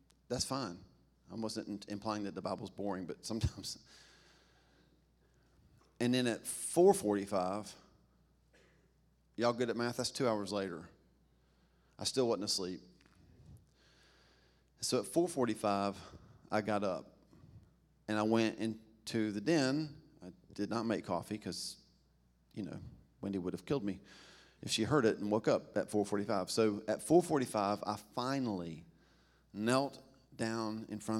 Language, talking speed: English, 135 wpm